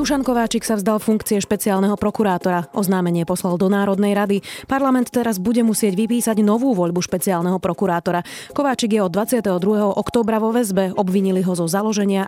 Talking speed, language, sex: 155 wpm, Slovak, female